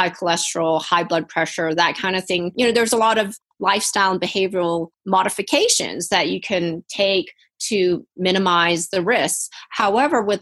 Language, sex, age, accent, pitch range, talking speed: English, female, 30-49, American, 180-215 Hz, 165 wpm